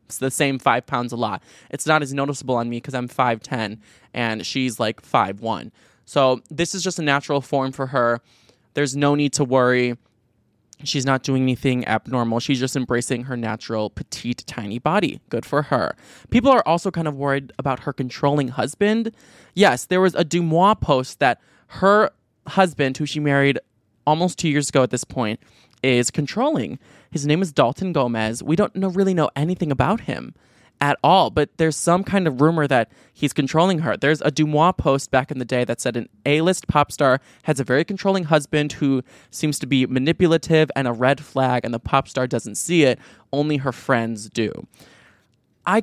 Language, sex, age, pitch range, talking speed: English, male, 20-39, 125-155 Hz, 190 wpm